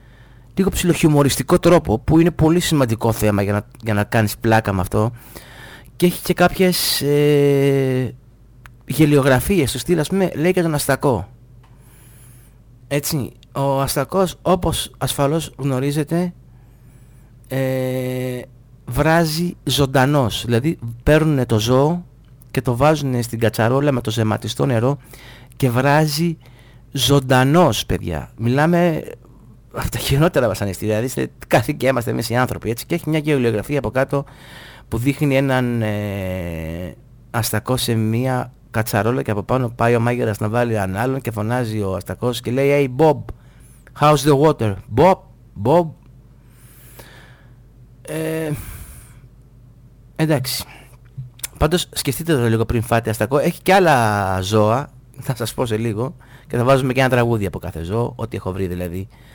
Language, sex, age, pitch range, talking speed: Greek, male, 30-49, 115-140 Hz, 125 wpm